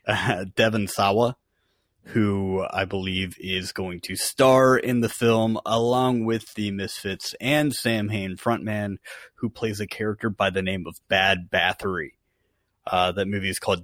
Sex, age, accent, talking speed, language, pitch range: male, 30-49, American, 155 wpm, English, 95-115 Hz